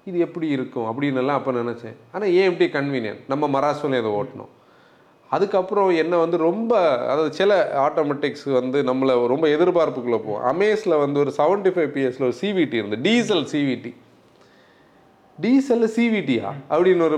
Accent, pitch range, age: native, 120-185 Hz, 30-49